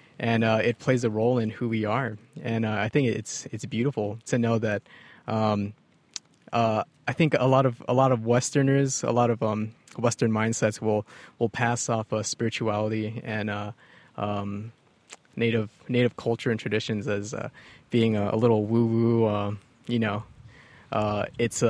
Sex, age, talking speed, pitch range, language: male, 20-39, 175 wpm, 110-125 Hz, English